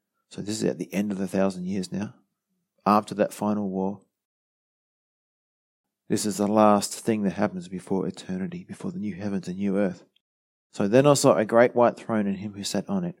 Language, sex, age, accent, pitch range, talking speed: English, male, 30-49, Australian, 100-135 Hz, 205 wpm